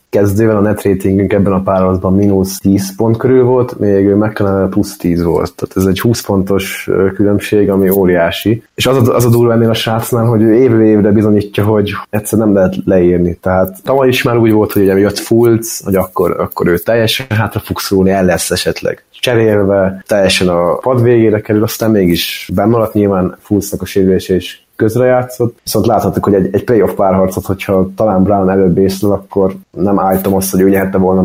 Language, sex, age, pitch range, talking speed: Hungarian, male, 30-49, 95-110 Hz, 180 wpm